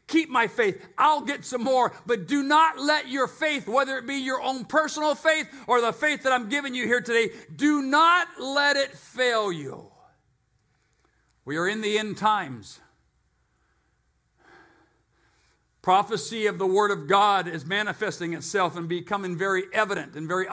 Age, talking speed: 50-69, 165 wpm